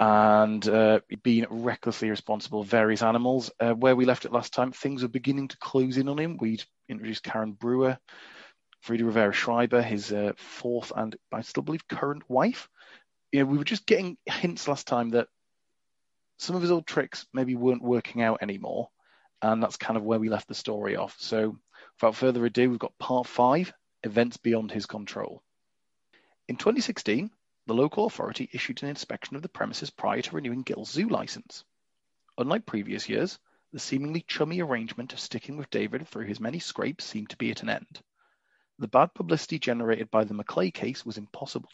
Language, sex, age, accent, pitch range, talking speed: English, male, 30-49, British, 110-135 Hz, 185 wpm